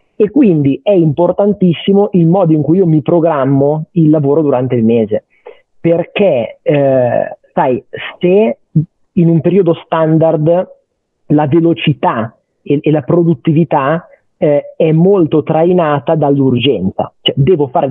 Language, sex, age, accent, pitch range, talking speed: Italian, male, 40-59, native, 140-165 Hz, 125 wpm